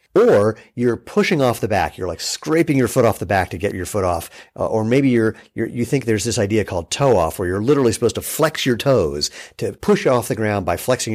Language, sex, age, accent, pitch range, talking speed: English, male, 50-69, American, 100-120 Hz, 250 wpm